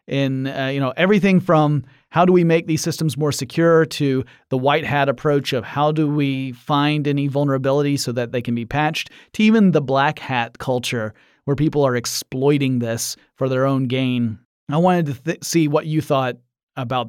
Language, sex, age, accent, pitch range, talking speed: English, male, 30-49, American, 125-160 Hz, 195 wpm